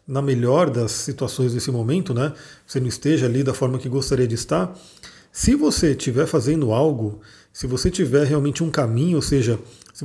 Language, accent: Portuguese, Brazilian